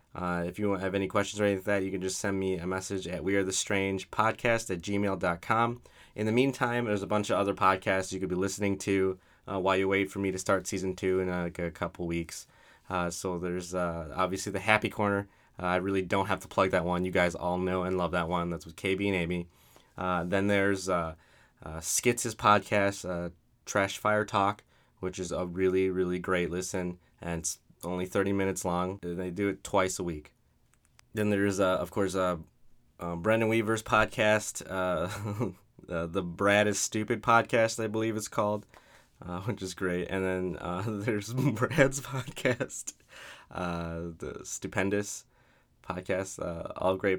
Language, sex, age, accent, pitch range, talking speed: English, male, 20-39, American, 90-105 Hz, 195 wpm